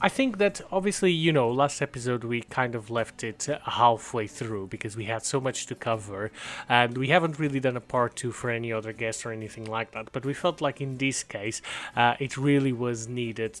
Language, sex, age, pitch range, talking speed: English, male, 30-49, 115-140 Hz, 220 wpm